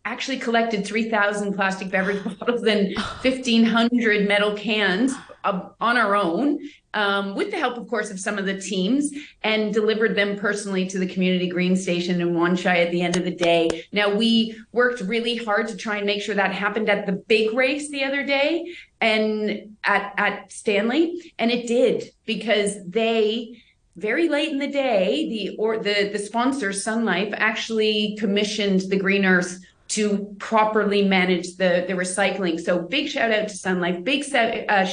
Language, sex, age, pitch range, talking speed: English, female, 30-49, 195-235 Hz, 175 wpm